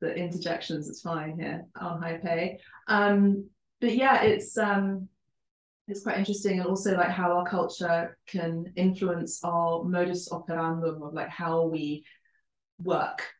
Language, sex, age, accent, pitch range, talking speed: English, female, 20-39, British, 165-200 Hz, 145 wpm